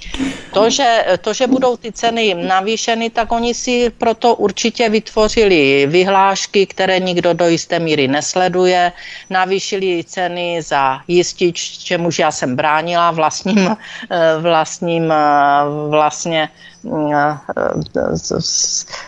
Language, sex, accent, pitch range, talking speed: Czech, female, native, 160-185 Hz, 100 wpm